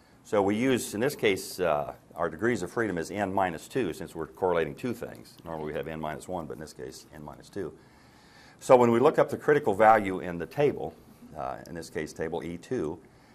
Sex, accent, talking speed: male, American, 230 wpm